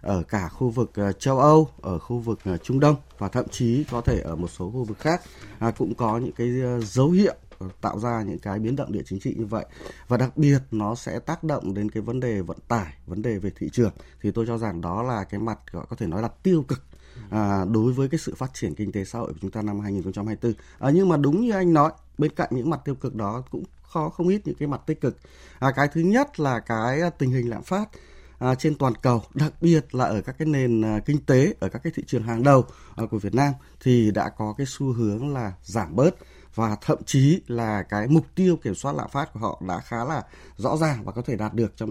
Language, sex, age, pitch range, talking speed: Vietnamese, male, 20-39, 110-150 Hz, 250 wpm